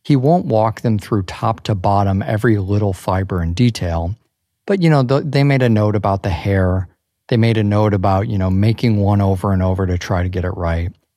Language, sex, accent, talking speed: English, male, American, 220 wpm